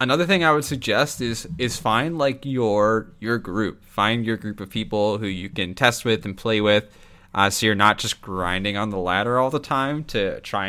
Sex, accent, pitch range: male, American, 95-120 Hz